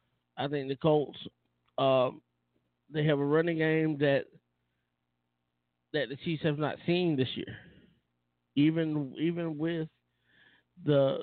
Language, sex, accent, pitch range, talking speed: English, male, American, 120-145 Hz, 125 wpm